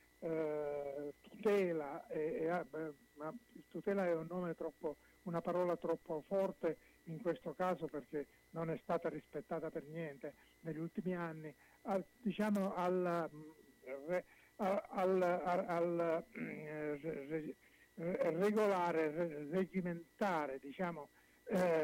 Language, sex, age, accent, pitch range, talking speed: Italian, male, 60-79, native, 155-185 Hz, 85 wpm